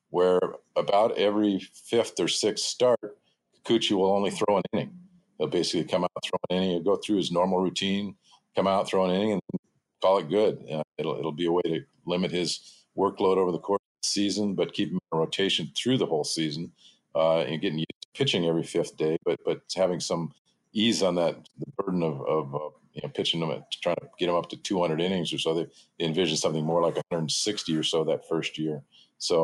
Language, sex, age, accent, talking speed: English, male, 40-59, American, 225 wpm